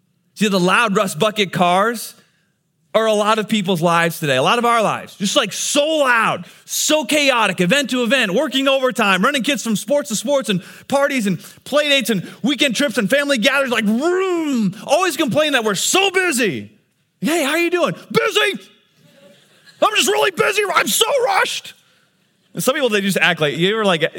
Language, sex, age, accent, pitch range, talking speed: English, male, 30-49, American, 155-245 Hz, 185 wpm